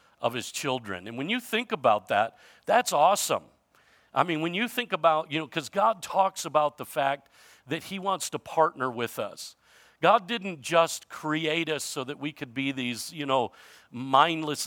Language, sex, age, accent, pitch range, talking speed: English, male, 50-69, American, 135-175 Hz, 190 wpm